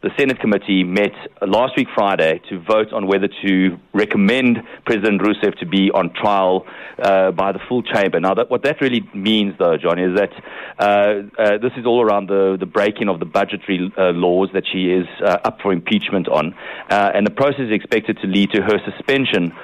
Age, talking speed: 30-49, 200 wpm